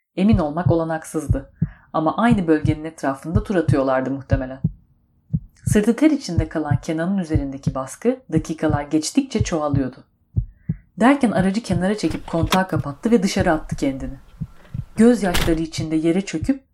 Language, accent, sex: Turkish, native, female